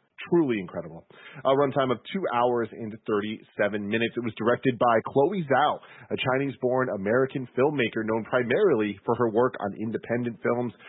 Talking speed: 155 wpm